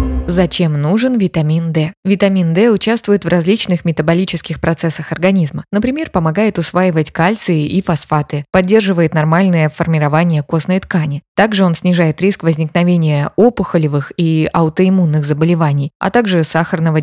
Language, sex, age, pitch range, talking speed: Russian, female, 20-39, 160-195 Hz, 125 wpm